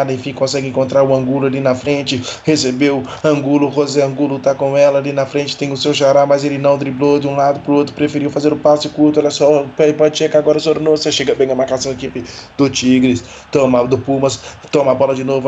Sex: male